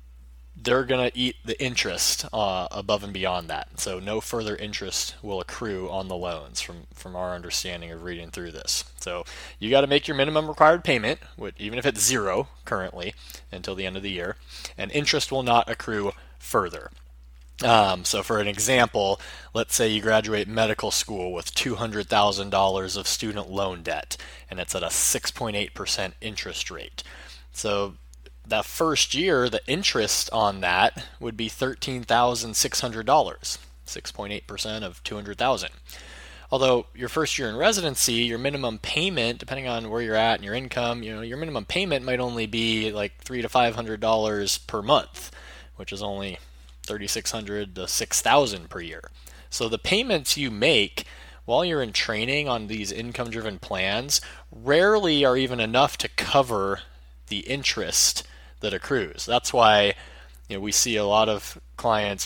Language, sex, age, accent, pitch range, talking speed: English, male, 20-39, American, 85-120 Hz, 160 wpm